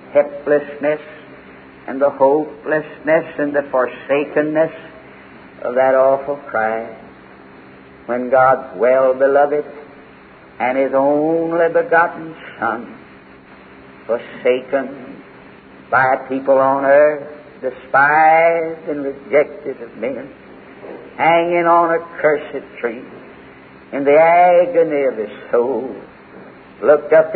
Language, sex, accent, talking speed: English, male, American, 90 wpm